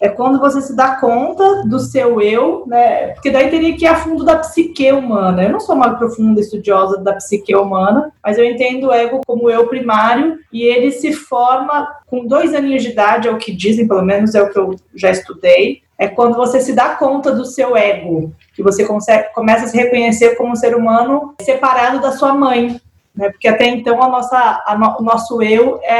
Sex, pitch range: female, 215-270 Hz